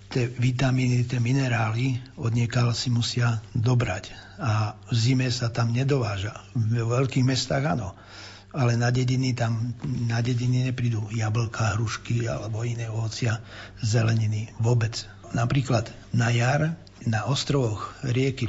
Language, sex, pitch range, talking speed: Slovak, male, 115-130 Hz, 125 wpm